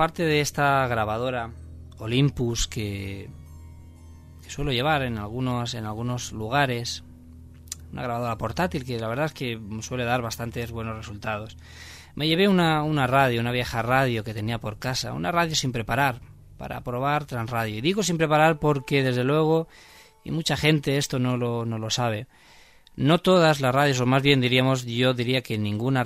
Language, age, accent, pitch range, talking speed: Spanish, 20-39, Spanish, 110-145 Hz, 165 wpm